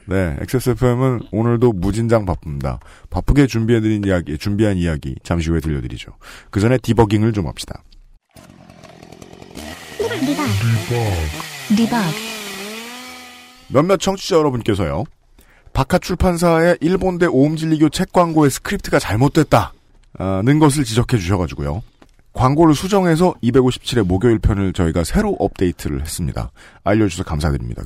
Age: 40-59